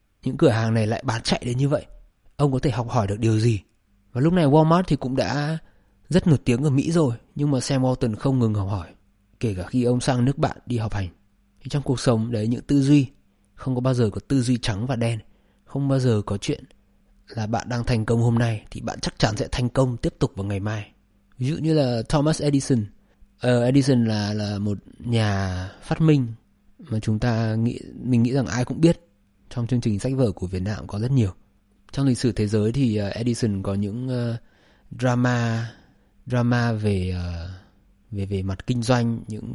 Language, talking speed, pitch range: Vietnamese, 220 wpm, 100-130 Hz